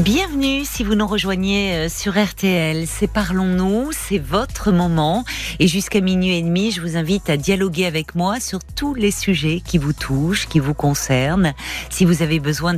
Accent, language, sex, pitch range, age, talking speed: French, French, female, 155-195 Hz, 40-59, 180 wpm